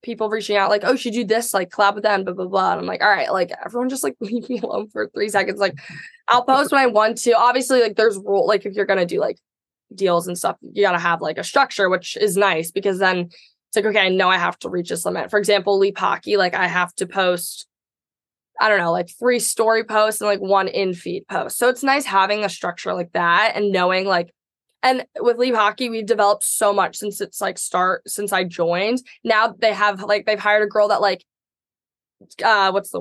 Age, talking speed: 20-39, 245 wpm